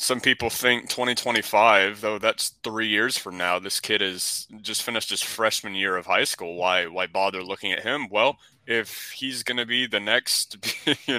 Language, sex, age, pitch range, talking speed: English, male, 20-39, 105-130 Hz, 195 wpm